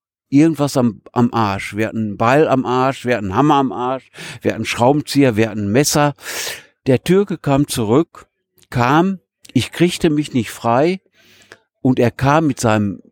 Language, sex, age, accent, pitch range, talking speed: German, male, 60-79, German, 105-140 Hz, 175 wpm